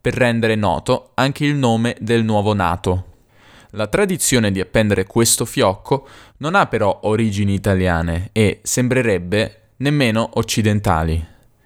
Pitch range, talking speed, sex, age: 100-130 Hz, 125 wpm, male, 10-29